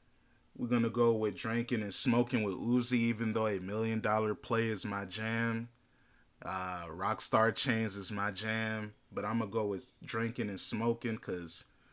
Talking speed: 175 wpm